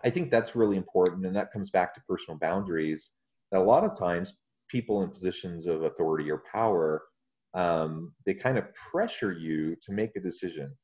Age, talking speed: 30-49, 190 wpm